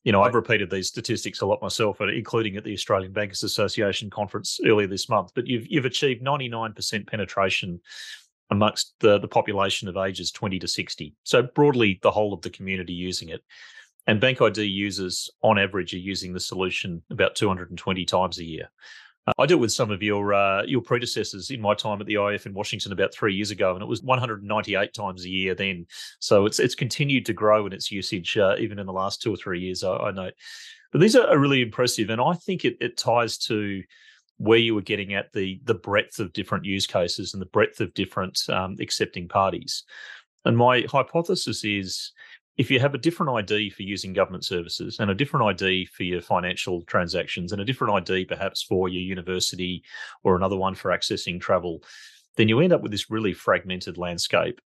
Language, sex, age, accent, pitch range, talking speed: English, male, 30-49, Australian, 95-115 Hz, 205 wpm